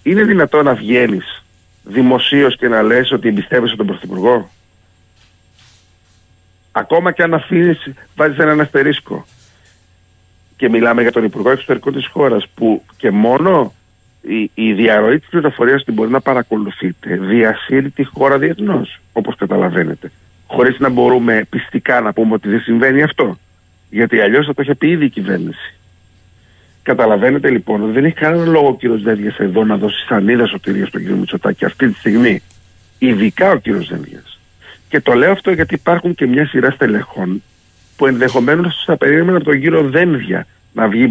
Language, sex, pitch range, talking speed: Greek, male, 100-150 Hz, 160 wpm